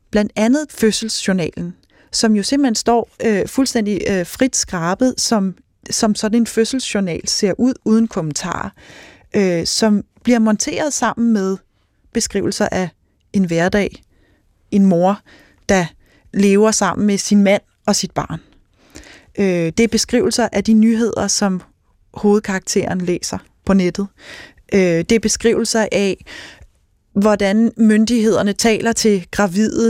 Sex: female